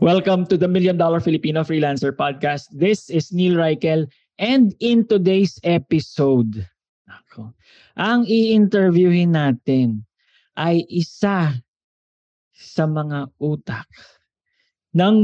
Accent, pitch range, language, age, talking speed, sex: Filipino, 140-190 Hz, English, 20-39, 100 wpm, male